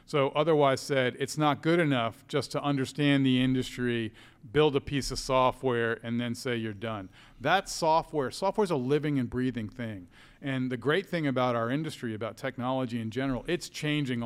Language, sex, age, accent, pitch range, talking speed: English, male, 40-59, American, 120-145 Hz, 180 wpm